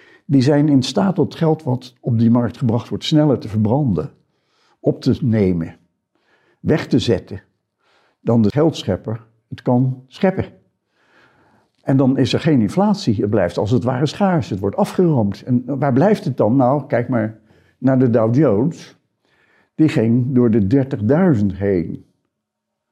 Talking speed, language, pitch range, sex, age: 160 wpm, Dutch, 110-135 Hz, male, 60-79